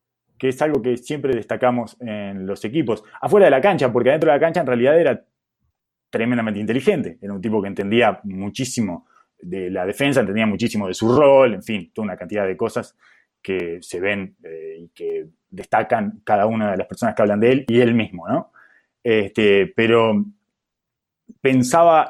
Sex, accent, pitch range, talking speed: male, Argentinian, 115-165 Hz, 175 wpm